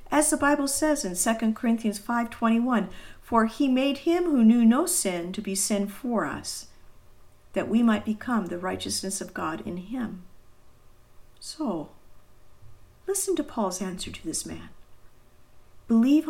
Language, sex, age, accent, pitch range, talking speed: English, female, 50-69, American, 175-235 Hz, 145 wpm